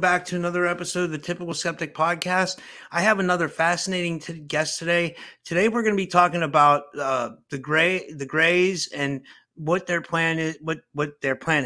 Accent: American